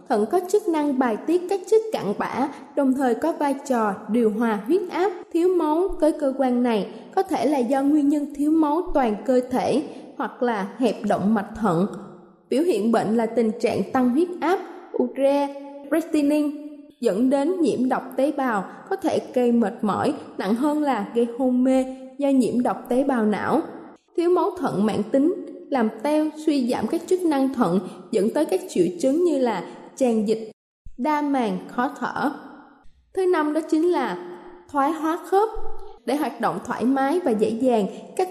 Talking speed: 185 wpm